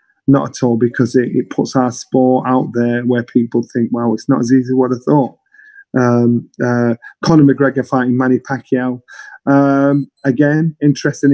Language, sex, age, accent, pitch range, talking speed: English, male, 30-49, British, 125-145 Hz, 175 wpm